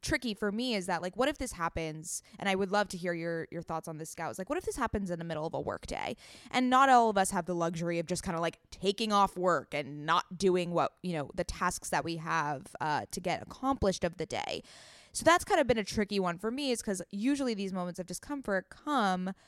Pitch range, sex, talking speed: 175-225 Hz, female, 265 wpm